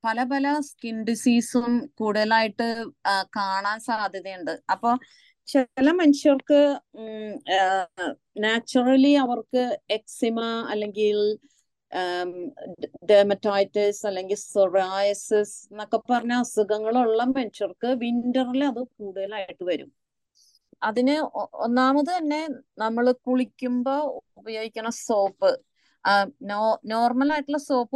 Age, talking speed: 30-49, 75 wpm